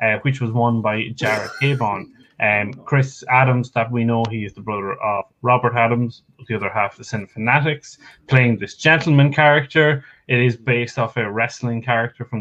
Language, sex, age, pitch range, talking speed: English, male, 20-39, 110-130 Hz, 190 wpm